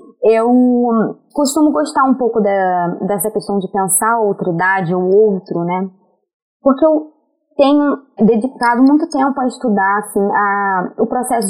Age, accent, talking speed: 20-39, Brazilian, 145 wpm